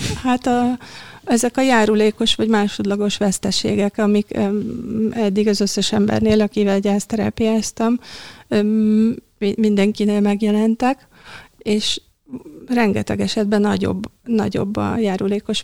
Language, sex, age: Hungarian, female, 30-49